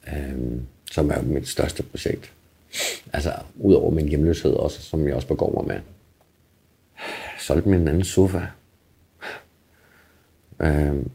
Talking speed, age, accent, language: 130 wpm, 50-69, native, Danish